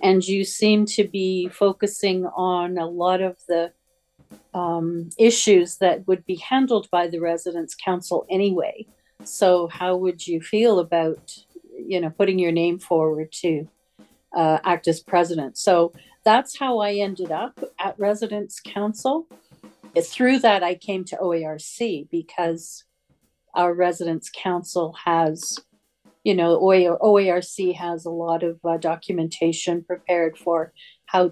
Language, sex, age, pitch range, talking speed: English, female, 50-69, 170-200 Hz, 135 wpm